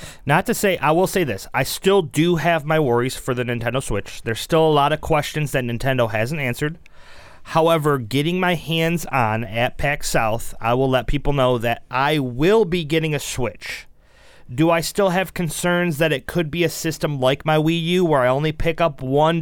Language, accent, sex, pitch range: English, American, male, 130-170 Hz